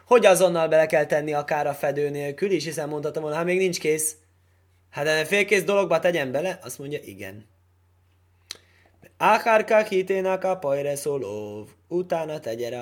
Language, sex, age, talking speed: Hungarian, male, 20-39, 155 wpm